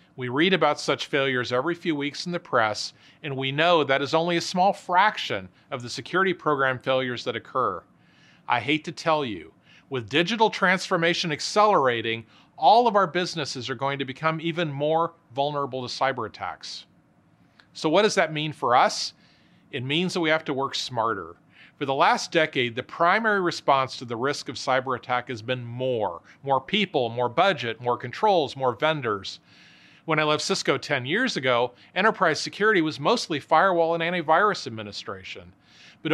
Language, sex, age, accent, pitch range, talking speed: English, male, 40-59, American, 130-170 Hz, 175 wpm